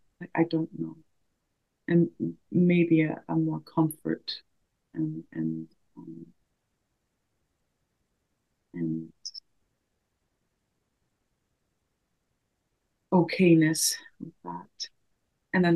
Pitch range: 155-170 Hz